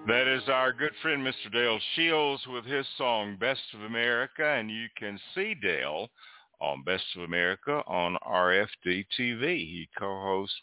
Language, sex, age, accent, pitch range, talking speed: English, male, 60-79, American, 90-120 Hz, 150 wpm